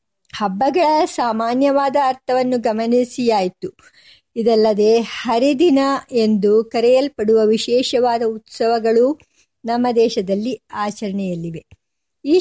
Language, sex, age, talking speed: Kannada, male, 50-69, 70 wpm